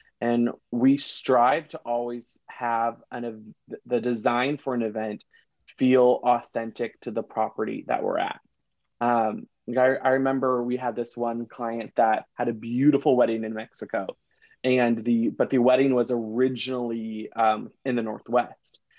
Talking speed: 150 wpm